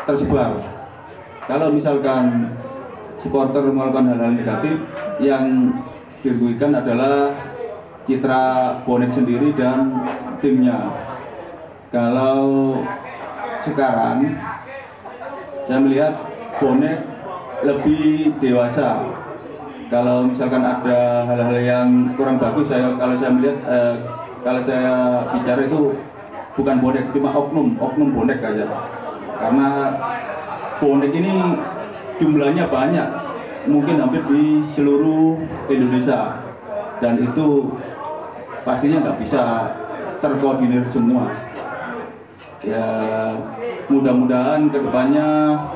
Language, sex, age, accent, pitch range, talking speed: Indonesian, male, 30-49, native, 125-150 Hz, 85 wpm